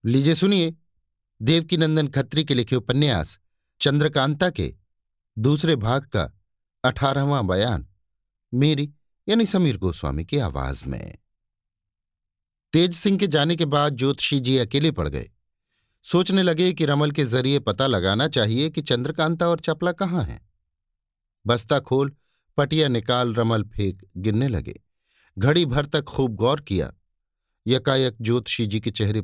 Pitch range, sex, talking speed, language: 105-150 Hz, male, 140 wpm, Hindi